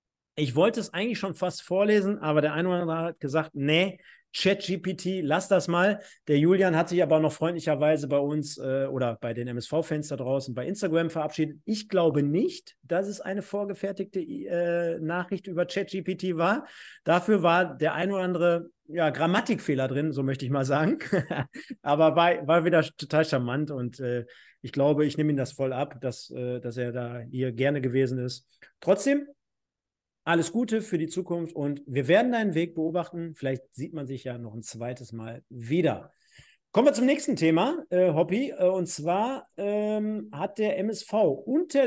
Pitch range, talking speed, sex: 150-200 Hz, 180 wpm, male